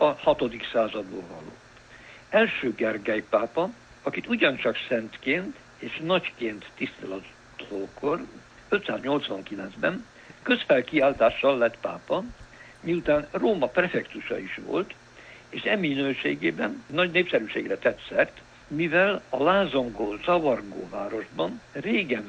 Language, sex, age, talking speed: Hungarian, male, 60-79, 85 wpm